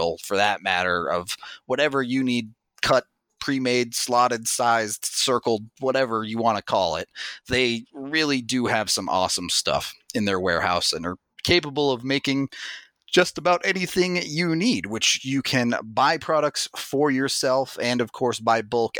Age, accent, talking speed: 30-49, American, 160 wpm